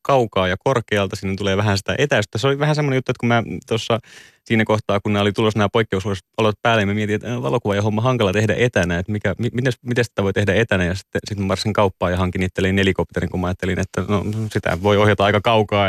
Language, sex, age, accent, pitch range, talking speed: Finnish, male, 30-49, native, 100-125 Hz, 225 wpm